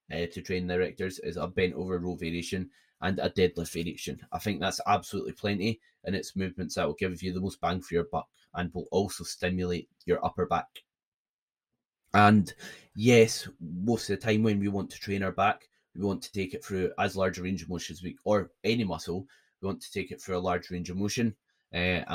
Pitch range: 85-95 Hz